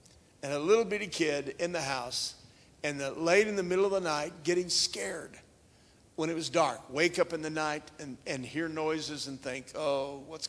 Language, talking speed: English, 200 wpm